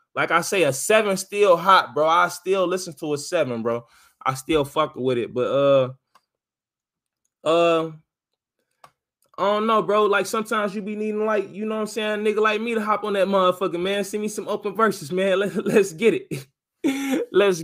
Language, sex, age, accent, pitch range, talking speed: English, male, 20-39, American, 150-200 Hz, 200 wpm